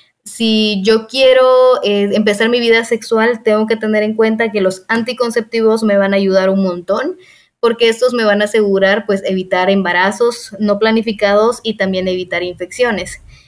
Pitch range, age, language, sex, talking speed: 195-230 Hz, 20-39, Spanish, female, 165 wpm